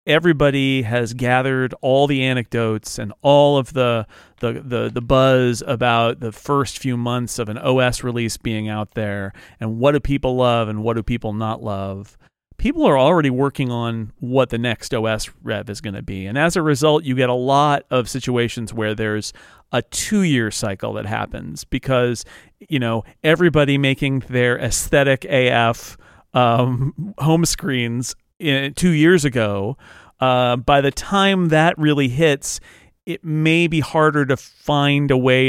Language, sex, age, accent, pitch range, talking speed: English, male, 40-59, American, 115-145 Hz, 165 wpm